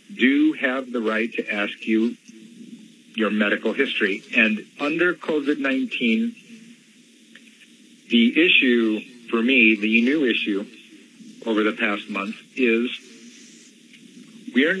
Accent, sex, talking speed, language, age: American, male, 105 wpm, English, 50-69